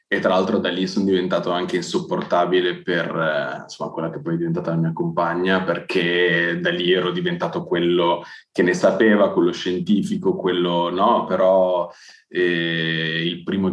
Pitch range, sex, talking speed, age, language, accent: 85-105 Hz, male, 155 wpm, 20-39, Italian, native